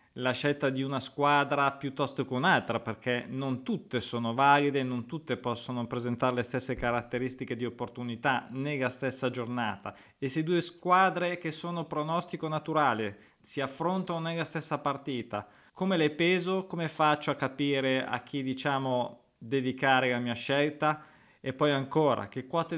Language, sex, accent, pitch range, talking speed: Italian, male, native, 125-150 Hz, 150 wpm